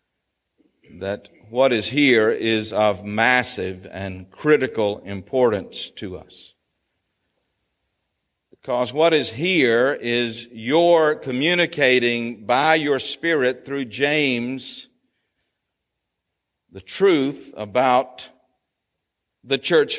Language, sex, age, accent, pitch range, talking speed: English, male, 50-69, American, 120-160 Hz, 85 wpm